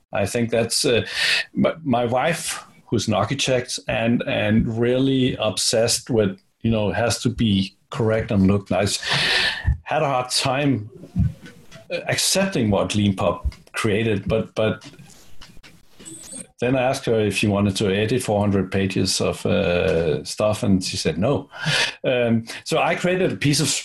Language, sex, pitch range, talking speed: English, male, 100-130 Hz, 145 wpm